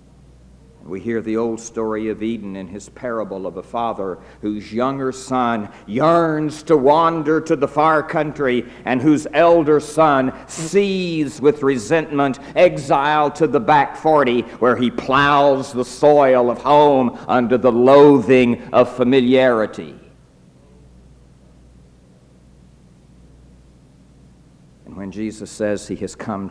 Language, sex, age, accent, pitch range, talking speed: English, male, 60-79, American, 105-155 Hz, 120 wpm